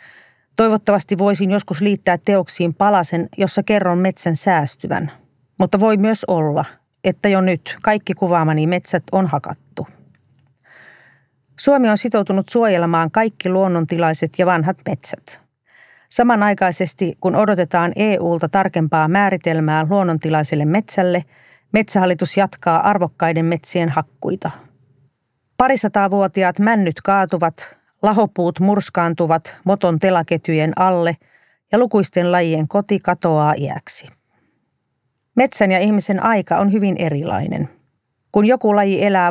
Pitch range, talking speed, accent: 165-200 Hz, 105 wpm, native